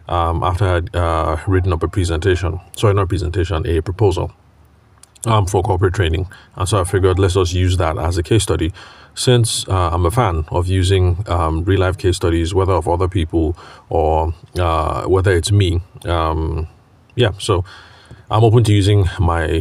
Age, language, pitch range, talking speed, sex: 30-49, English, 85-100 Hz, 175 wpm, male